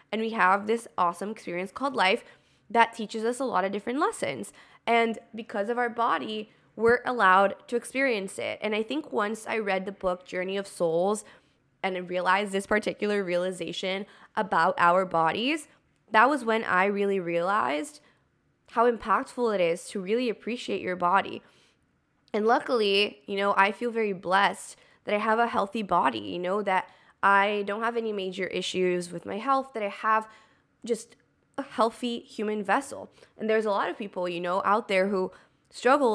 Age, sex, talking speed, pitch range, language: 20-39, female, 175 wpm, 190-230 Hz, English